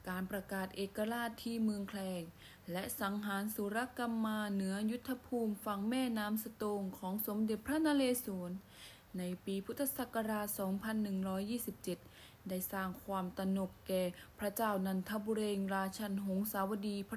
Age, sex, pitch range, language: 20-39, female, 195-235 Hz, Thai